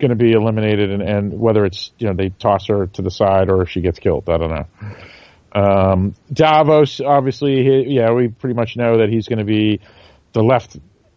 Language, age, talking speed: English, 40-59, 210 wpm